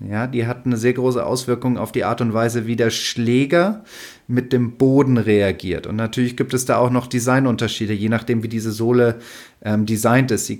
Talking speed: 205 wpm